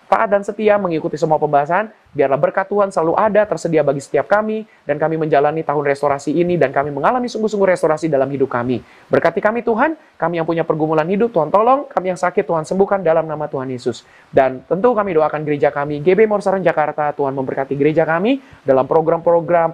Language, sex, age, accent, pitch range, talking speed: Indonesian, male, 30-49, native, 145-180 Hz, 190 wpm